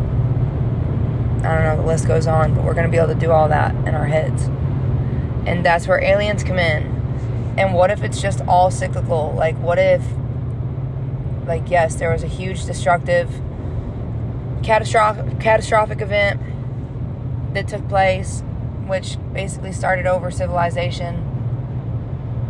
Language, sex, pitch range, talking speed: English, female, 120-130 Hz, 140 wpm